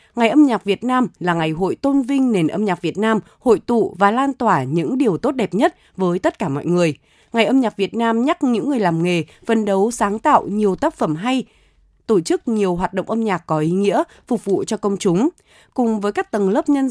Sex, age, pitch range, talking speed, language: female, 20-39, 185-255 Hz, 245 wpm, Vietnamese